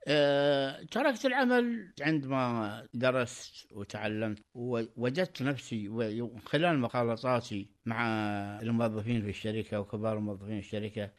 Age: 60-79